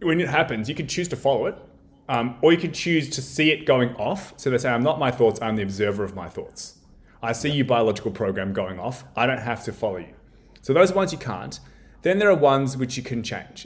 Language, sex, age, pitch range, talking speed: English, male, 20-39, 105-135 Hz, 255 wpm